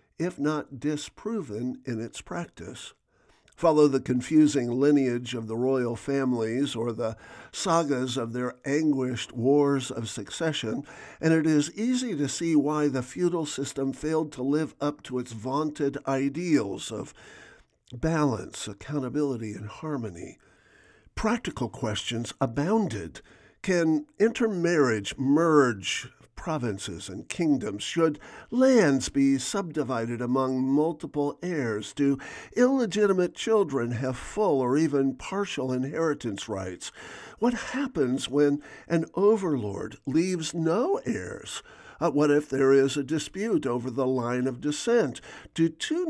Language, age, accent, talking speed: English, 50-69, American, 120 wpm